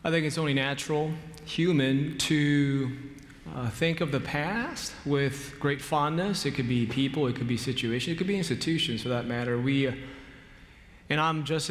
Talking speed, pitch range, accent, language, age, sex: 175 wpm, 125-150 Hz, American, English, 30-49, male